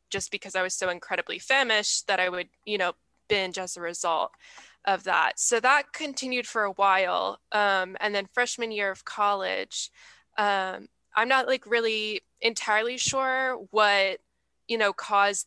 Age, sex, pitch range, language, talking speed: 10-29, female, 185-220 Hz, English, 165 wpm